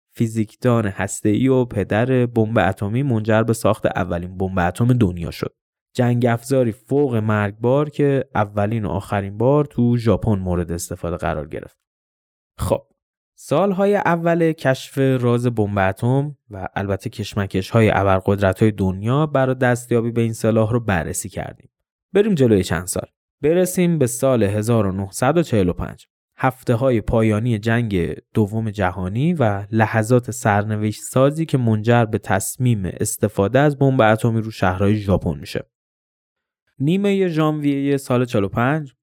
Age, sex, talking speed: 20-39, male, 130 wpm